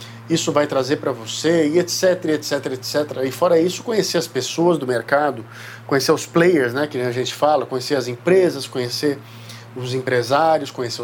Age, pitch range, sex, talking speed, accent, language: 50-69, 120-170 Hz, male, 175 wpm, Brazilian, Portuguese